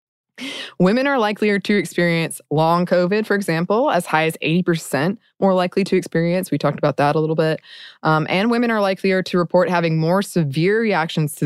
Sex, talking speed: female, 190 wpm